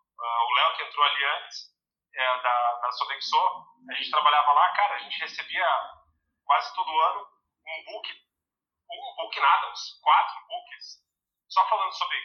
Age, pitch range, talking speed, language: 40-59, 150-245 Hz, 160 wpm, Portuguese